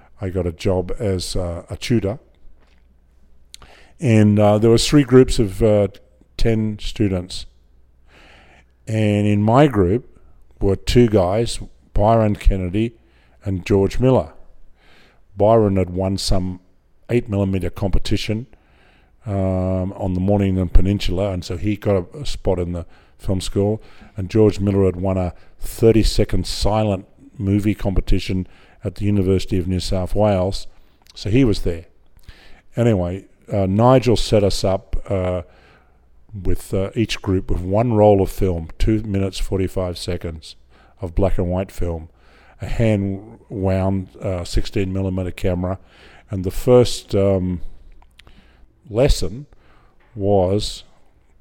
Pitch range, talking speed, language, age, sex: 90-105 Hz, 125 wpm, English, 50-69, male